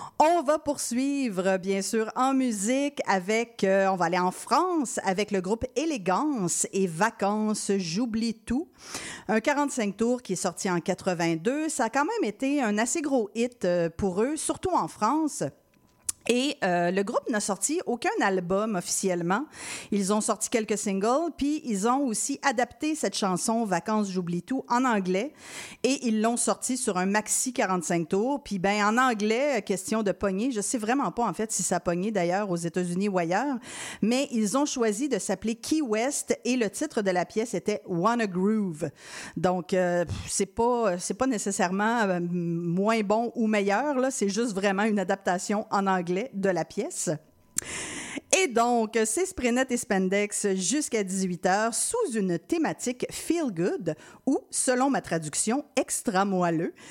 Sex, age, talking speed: female, 40-59, 170 wpm